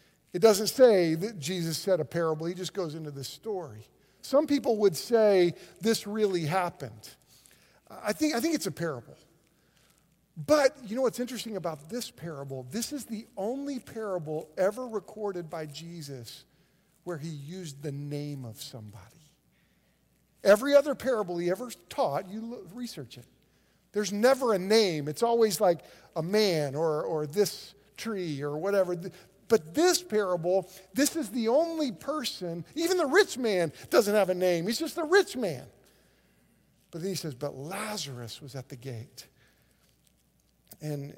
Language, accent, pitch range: English, American, 150-210 Hz